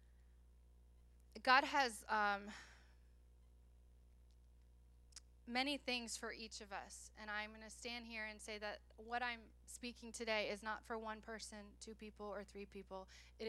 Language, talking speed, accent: English, 145 wpm, American